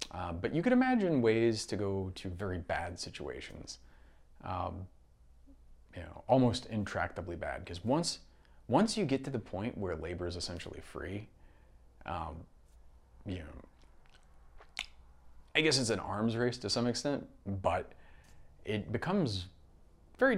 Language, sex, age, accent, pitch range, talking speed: English, male, 30-49, American, 85-110 Hz, 140 wpm